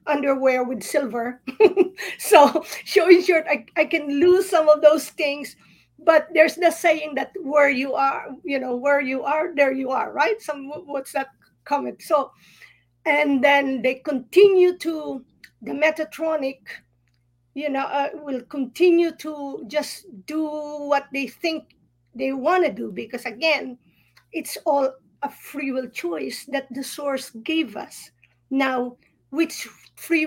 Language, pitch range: English, 255-305 Hz